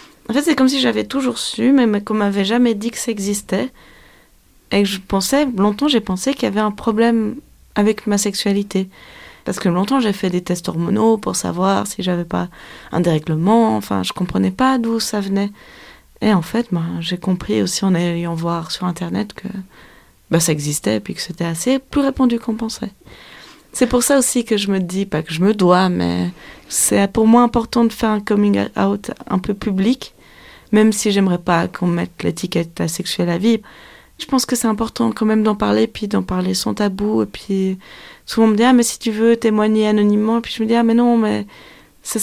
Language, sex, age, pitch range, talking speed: French, female, 20-39, 185-230 Hz, 225 wpm